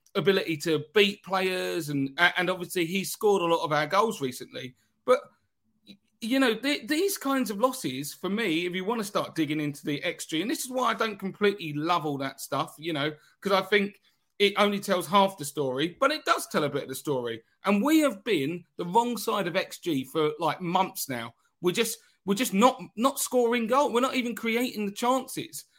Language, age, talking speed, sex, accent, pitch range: English, 40-59, 215 wpm, male, British, 170-245 Hz